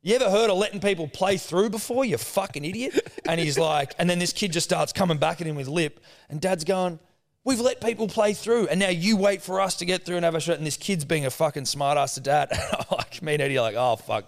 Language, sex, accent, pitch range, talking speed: English, male, Australian, 135-185 Hz, 280 wpm